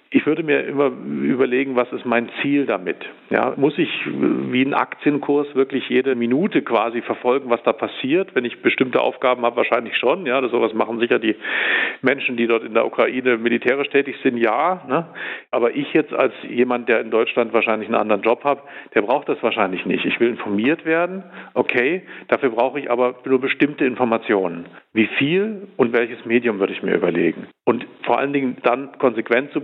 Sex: male